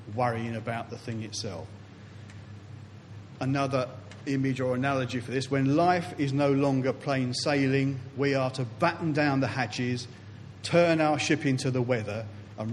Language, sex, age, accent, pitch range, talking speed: English, male, 40-59, British, 105-135 Hz, 150 wpm